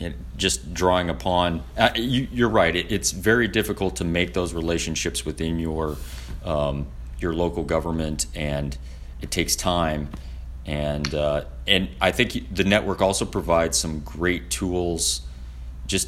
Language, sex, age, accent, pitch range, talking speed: English, male, 30-49, American, 65-90 Hz, 130 wpm